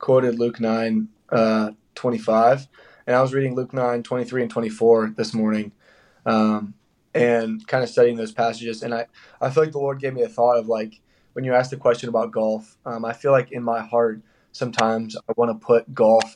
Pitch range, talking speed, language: 110-125 Hz, 205 wpm, English